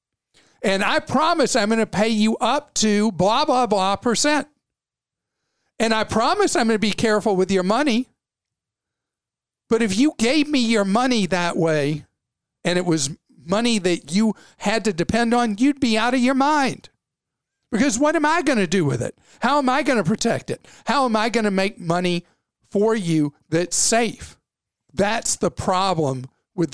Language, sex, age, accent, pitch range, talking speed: English, male, 50-69, American, 160-230 Hz, 180 wpm